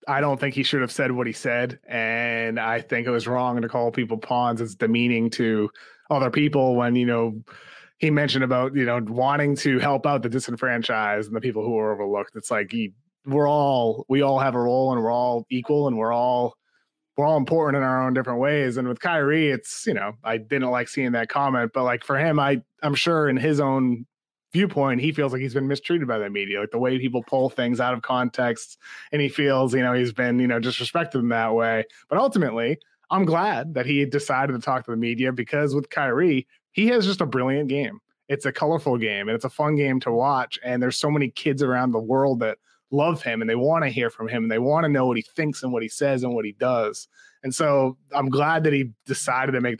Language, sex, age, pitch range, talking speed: English, male, 20-39, 120-140 Hz, 240 wpm